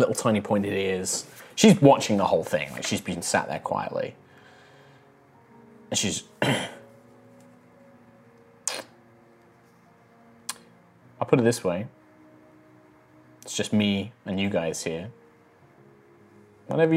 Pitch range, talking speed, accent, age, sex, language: 95-125 Hz, 105 wpm, British, 20-39, male, English